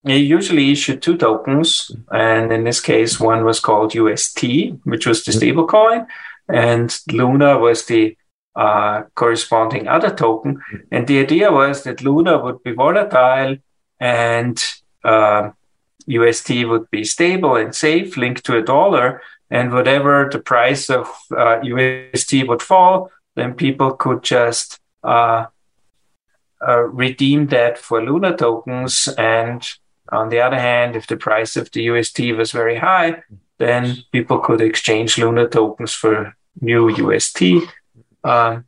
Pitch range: 115-140 Hz